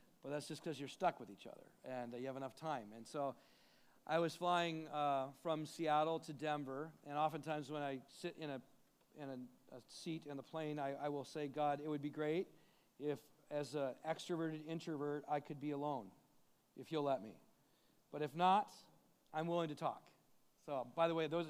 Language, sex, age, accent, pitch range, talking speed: English, male, 40-59, American, 145-175 Hz, 205 wpm